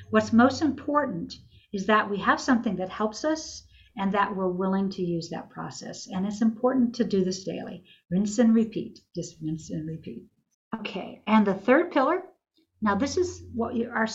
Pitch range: 190-245 Hz